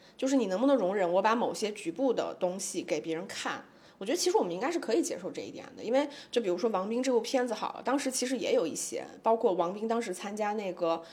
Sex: female